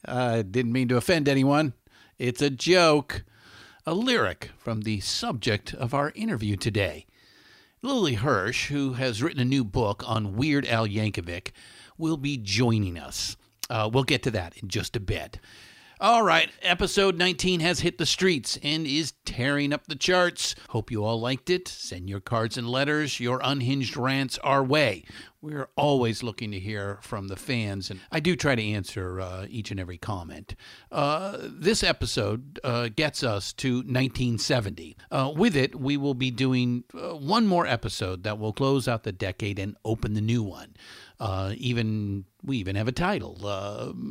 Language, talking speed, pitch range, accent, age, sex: English, 175 wpm, 105-140 Hz, American, 50-69, male